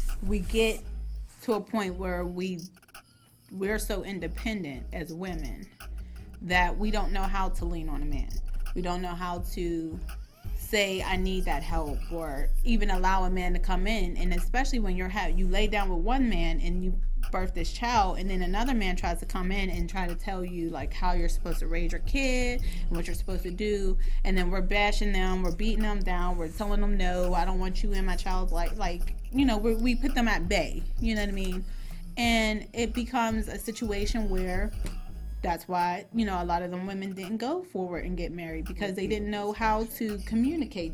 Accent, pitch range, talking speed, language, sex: American, 175-210 Hz, 210 wpm, English, female